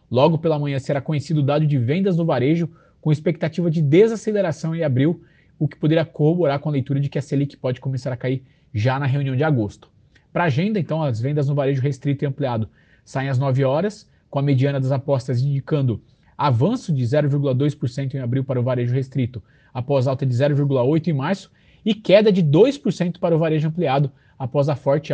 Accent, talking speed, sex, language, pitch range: Brazilian, 200 wpm, male, Portuguese, 135-165 Hz